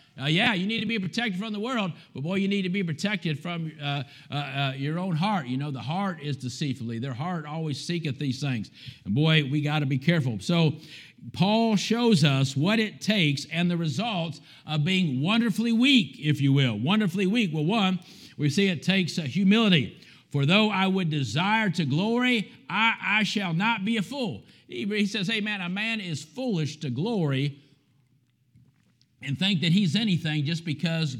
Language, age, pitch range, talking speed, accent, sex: English, 50-69, 145-195 Hz, 195 wpm, American, male